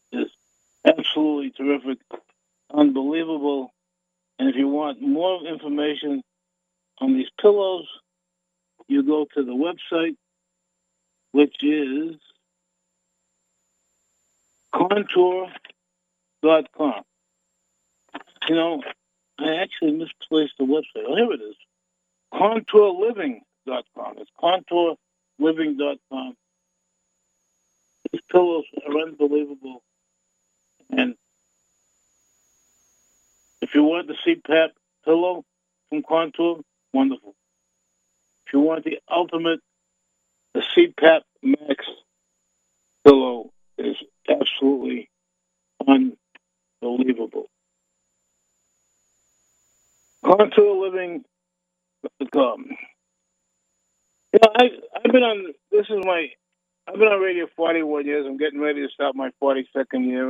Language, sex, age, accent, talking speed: English, male, 60-79, American, 90 wpm